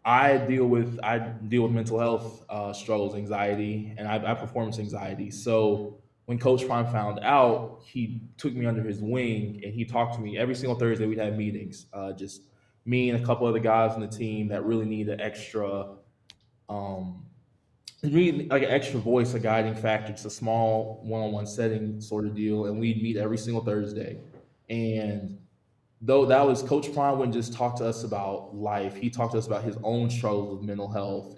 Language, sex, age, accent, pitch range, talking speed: English, male, 20-39, American, 105-120 Hz, 195 wpm